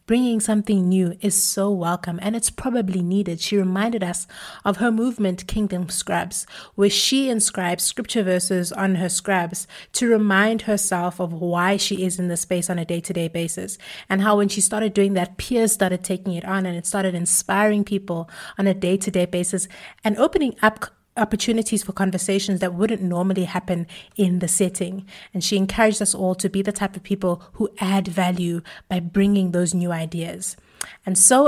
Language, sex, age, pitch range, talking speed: English, female, 30-49, 180-210 Hz, 190 wpm